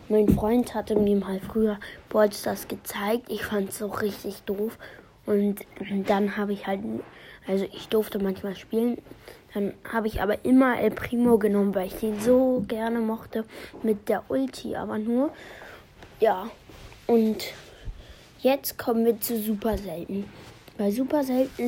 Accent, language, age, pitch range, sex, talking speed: German, German, 20-39, 200-230 Hz, female, 150 wpm